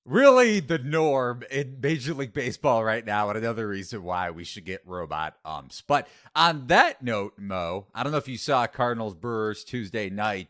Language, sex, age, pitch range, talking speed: English, male, 30-49, 105-150 Hz, 185 wpm